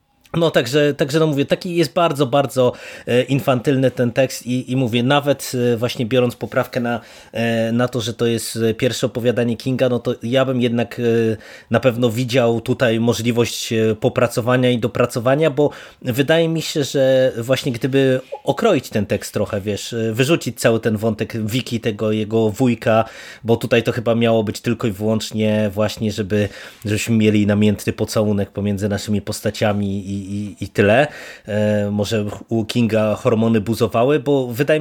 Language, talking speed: Polish, 155 wpm